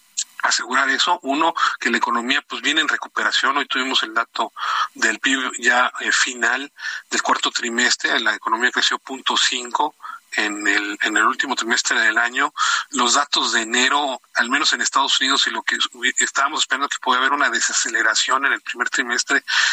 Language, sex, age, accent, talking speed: Spanish, male, 40-59, Mexican, 175 wpm